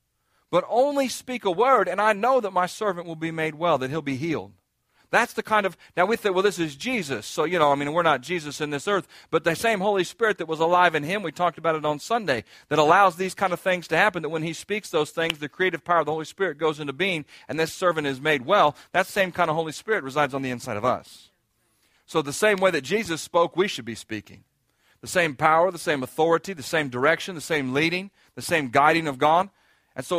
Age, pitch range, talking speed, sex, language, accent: 40-59, 145-190 Hz, 255 wpm, male, English, American